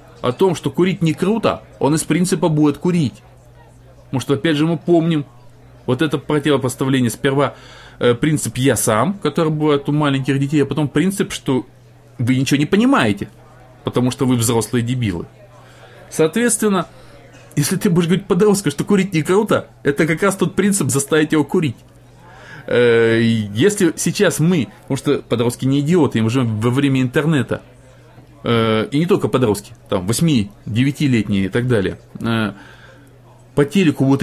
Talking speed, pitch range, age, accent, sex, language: 155 wpm, 125-175 Hz, 20-39, native, male, Russian